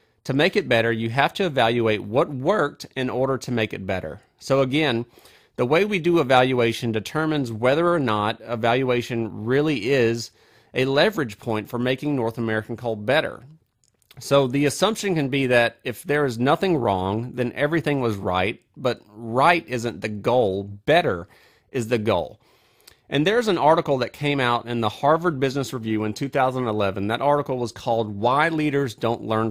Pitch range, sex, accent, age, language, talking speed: 115-145 Hz, male, American, 40-59, English, 175 wpm